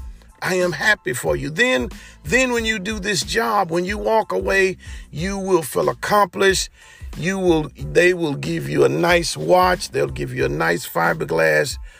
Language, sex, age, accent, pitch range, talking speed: English, male, 40-59, American, 115-190 Hz, 170 wpm